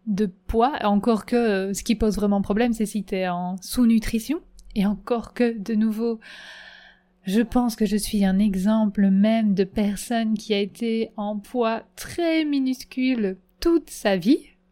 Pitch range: 195-230 Hz